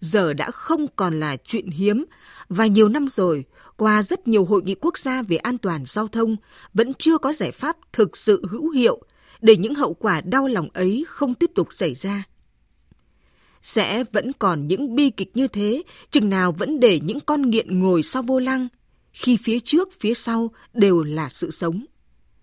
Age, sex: 20-39, female